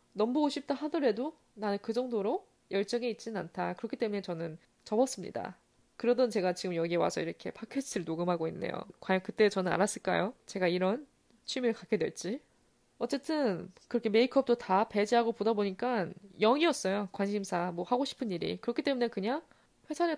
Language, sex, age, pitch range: Korean, female, 20-39, 195-275 Hz